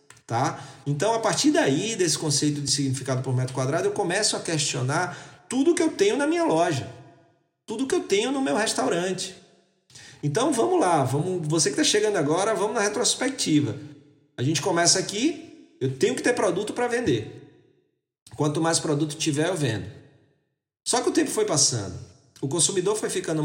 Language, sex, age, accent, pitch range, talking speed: Portuguese, male, 40-59, Brazilian, 135-205 Hz, 175 wpm